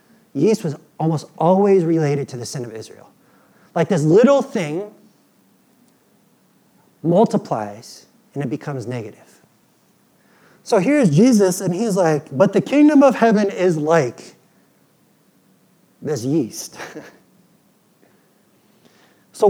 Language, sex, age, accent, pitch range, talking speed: English, male, 30-49, American, 160-215 Hz, 110 wpm